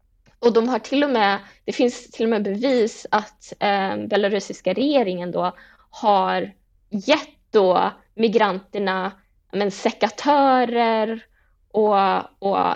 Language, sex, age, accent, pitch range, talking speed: Swedish, female, 20-39, native, 185-230 Hz, 120 wpm